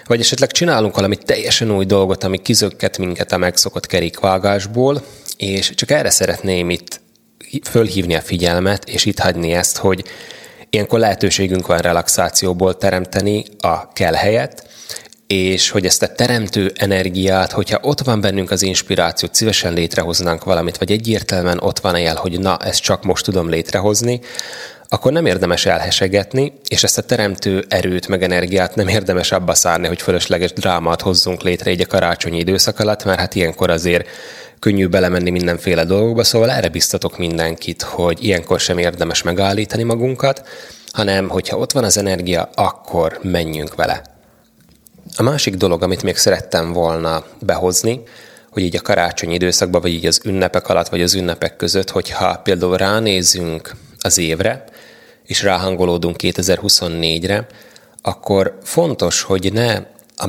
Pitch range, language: 85-100 Hz, Hungarian